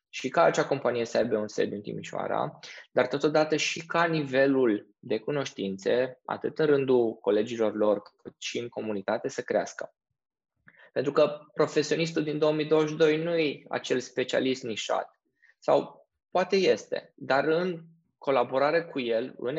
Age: 20-39